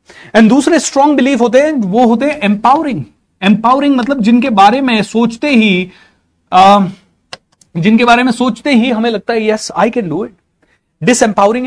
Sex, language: male, Hindi